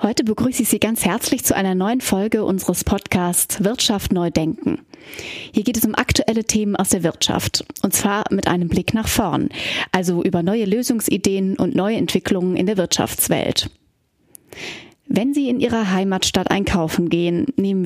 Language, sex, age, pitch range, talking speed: German, female, 30-49, 185-230 Hz, 165 wpm